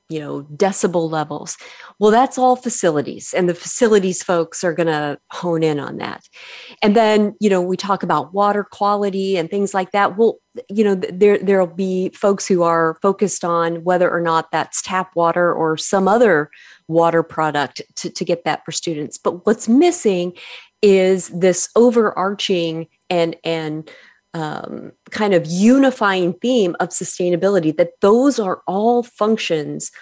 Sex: female